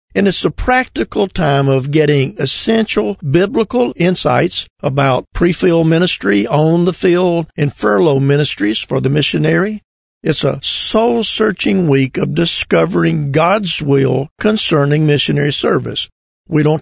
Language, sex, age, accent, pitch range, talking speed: English, male, 50-69, American, 140-175 Hz, 120 wpm